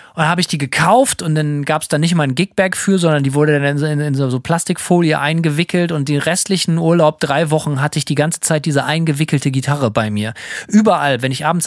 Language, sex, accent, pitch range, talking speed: German, male, German, 145-180 Hz, 235 wpm